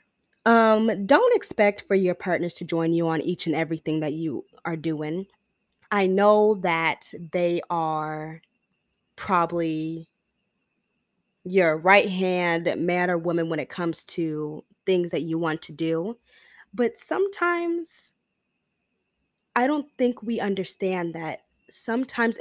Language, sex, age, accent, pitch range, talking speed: English, female, 20-39, American, 165-225 Hz, 130 wpm